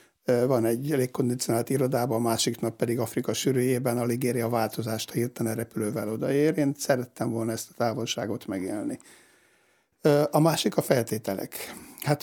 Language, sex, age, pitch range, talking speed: Hungarian, male, 60-79, 115-140 Hz, 145 wpm